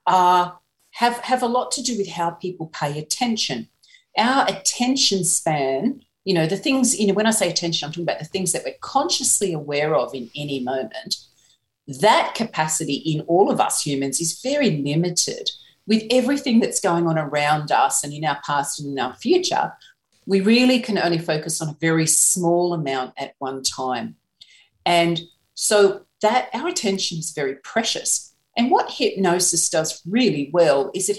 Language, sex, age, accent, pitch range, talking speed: English, female, 40-59, Australian, 160-225 Hz, 175 wpm